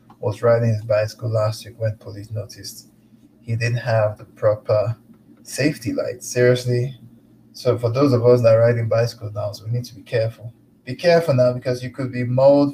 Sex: male